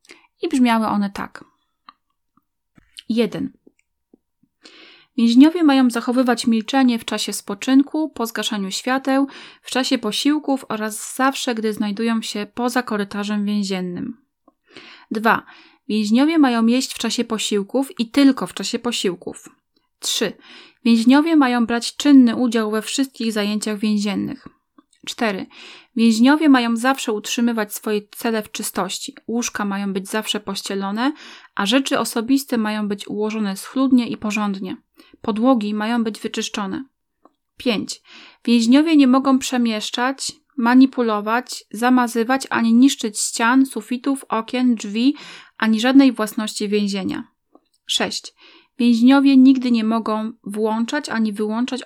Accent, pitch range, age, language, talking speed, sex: native, 215-270 Hz, 20-39, Polish, 115 wpm, female